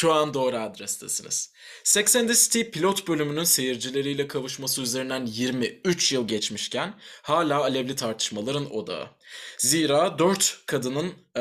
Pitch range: 120-165 Hz